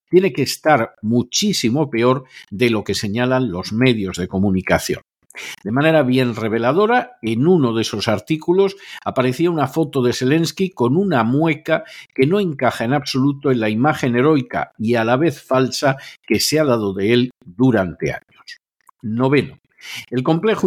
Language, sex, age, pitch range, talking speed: Spanish, male, 50-69, 115-155 Hz, 160 wpm